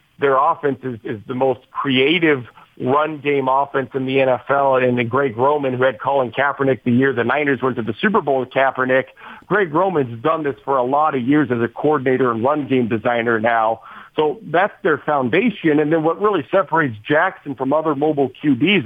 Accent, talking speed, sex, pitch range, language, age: American, 200 wpm, male, 130-155 Hz, English, 50-69